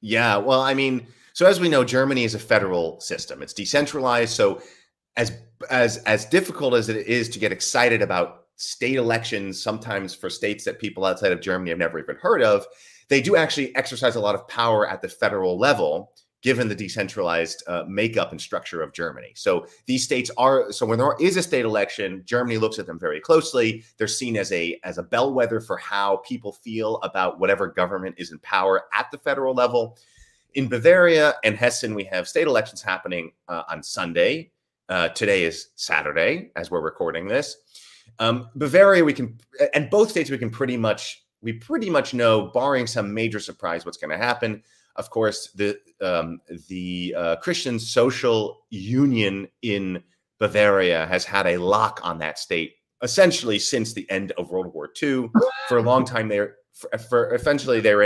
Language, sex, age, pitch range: English, male, 30-49, 105-175 Hz